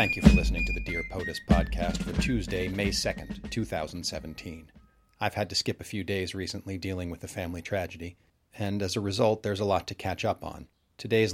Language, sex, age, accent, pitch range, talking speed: English, male, 40-59, American, 95-120 Hz, 205 wpm